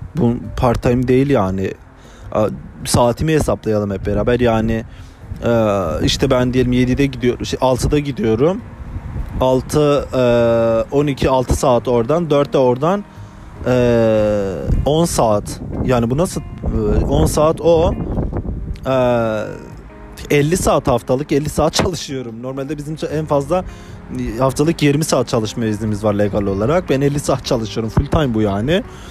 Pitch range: 105-140 Hz